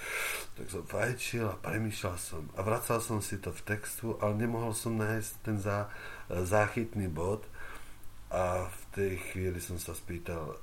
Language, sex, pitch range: Czech, male, 90-115 Hz